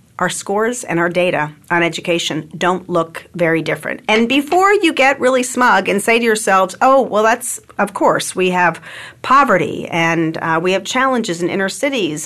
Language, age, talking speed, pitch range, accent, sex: English, 40-59, 180 wpm, 175-240 Hz, American, female